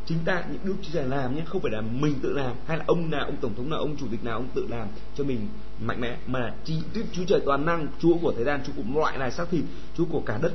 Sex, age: male, 20-39